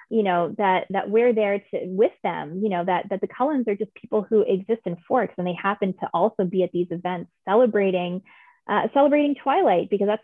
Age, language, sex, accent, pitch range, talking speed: 20-39, English, female, American, 190-260 Hz, 215 wpm